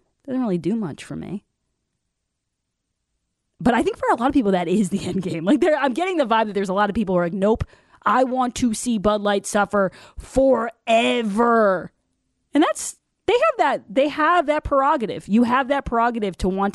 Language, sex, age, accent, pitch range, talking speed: English, female, 20-39, American, 175-225 Hz, 205 wpm